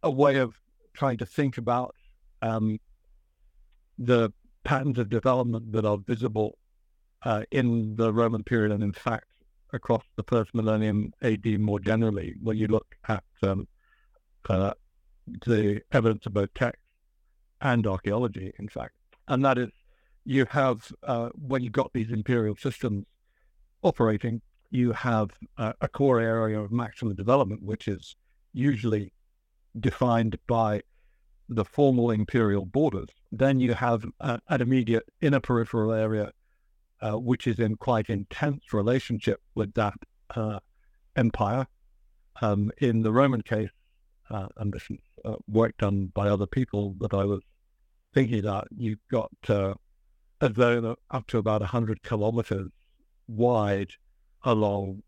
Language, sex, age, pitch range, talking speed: English, male, 60-79, 105-120 Hz, 140 wpm